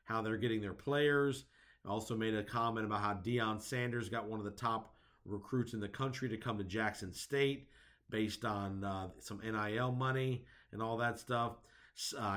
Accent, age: American, 50-69